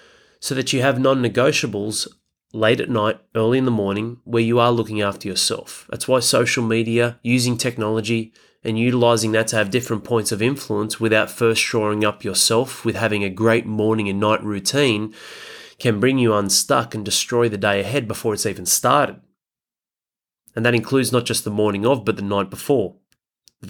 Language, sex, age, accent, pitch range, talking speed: English, male, 30-49, Australian, 110-130 Hz, 180 wpm